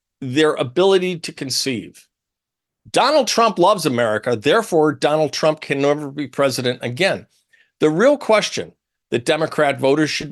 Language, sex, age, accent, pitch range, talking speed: English, male, 50-69, American, 130-195 Hz, 135 wpm